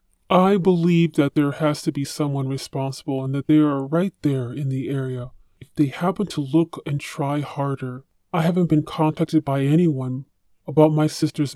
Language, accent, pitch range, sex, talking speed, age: English, American, 140-170 Hz, female, 180 wpm, 20-39